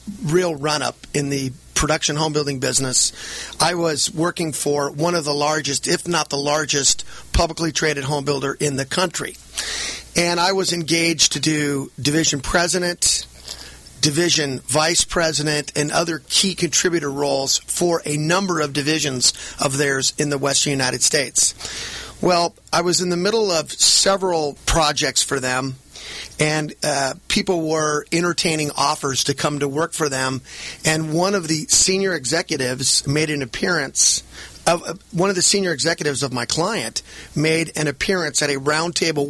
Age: 30-49